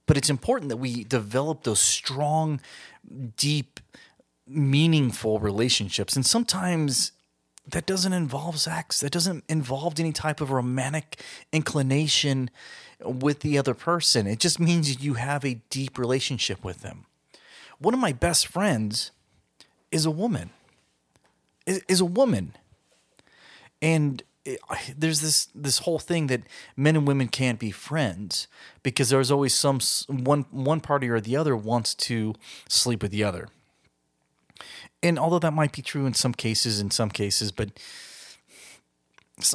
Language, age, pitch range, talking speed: English, 30-49, 110-145 Hz, 145 wpm